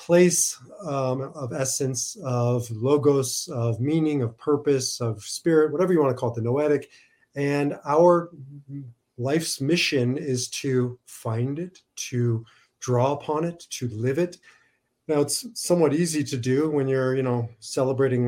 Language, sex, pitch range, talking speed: English, male, 120-150 Hz, 150 wpm